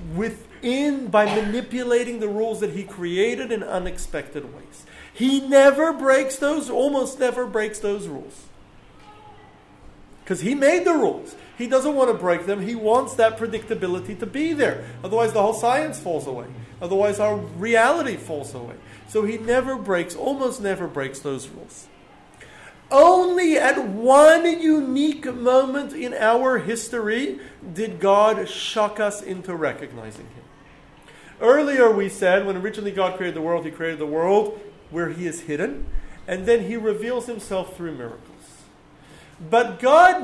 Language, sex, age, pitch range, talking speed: English, male, 40-59, 175-245 Hz, 150 wpm